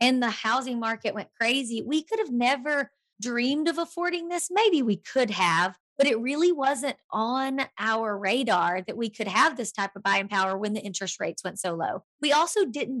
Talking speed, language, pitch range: 205 wpm, English, 210-260 Hz